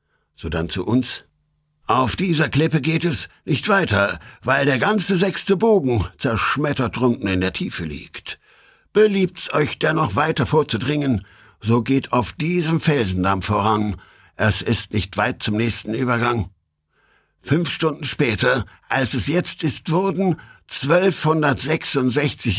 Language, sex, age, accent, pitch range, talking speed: German, male, 60-79, German, 110-160 Hz, 130 wpm